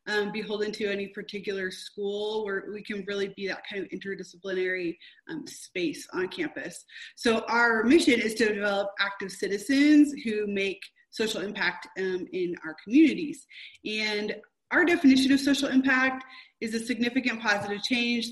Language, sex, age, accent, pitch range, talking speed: English, female, 20-39, American, 200-275 Hz, 150 wpm